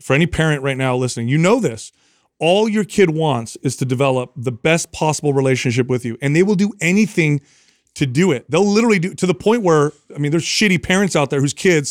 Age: 30-49